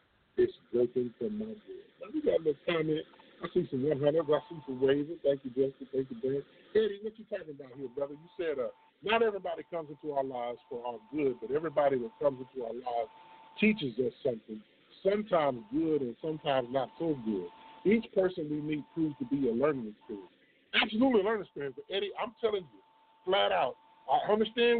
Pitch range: 155-250 Hz